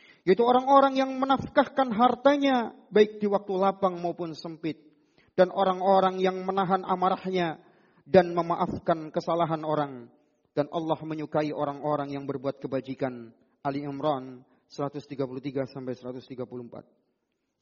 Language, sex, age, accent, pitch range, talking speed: Indonesian, male, 40-59, native, 150-195 Hz, 100 wpm